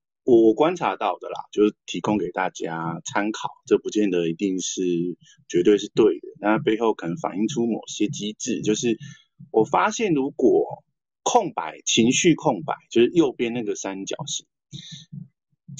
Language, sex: Chinese, male